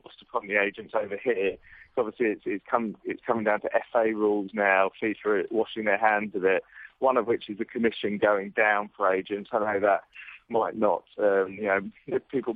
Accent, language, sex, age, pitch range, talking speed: British, English, male, 20-39, 105-120 Hz, 200 wpm